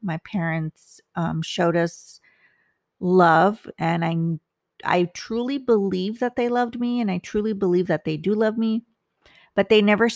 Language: English